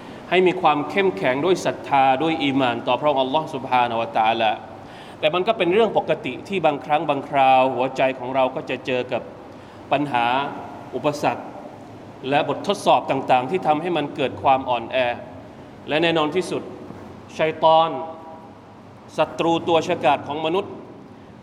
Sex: male